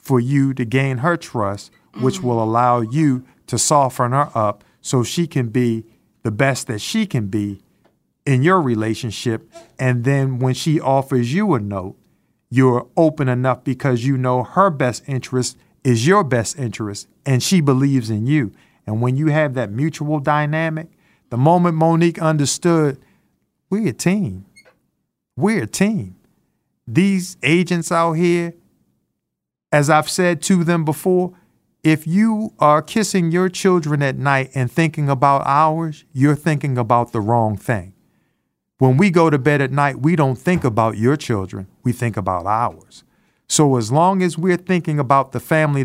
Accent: American